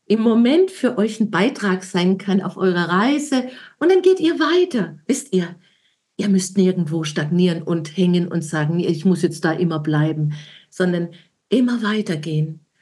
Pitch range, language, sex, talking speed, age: 180-225 Hz, German, female, 165 wpm, 50-69